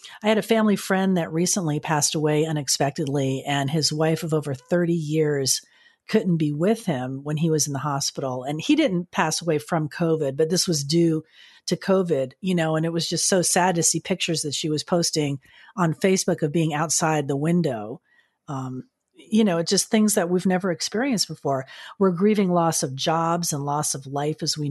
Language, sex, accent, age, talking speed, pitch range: English, female, American, 40-59, 205 wpm, 155-205 Hz